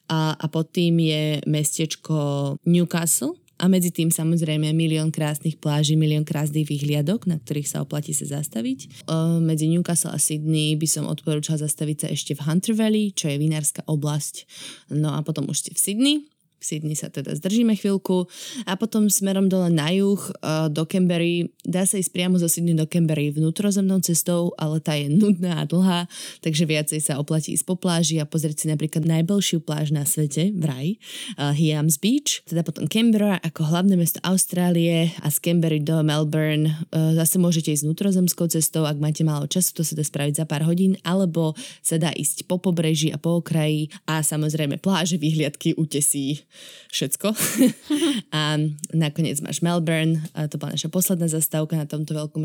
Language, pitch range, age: Slovak, 155-175 Hz, 20-39